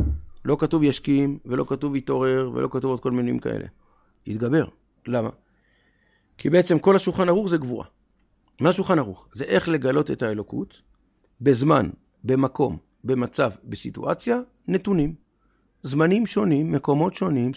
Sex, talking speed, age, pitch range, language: male, 130 wpm, 50-69, 130-190 Hz, Hebrew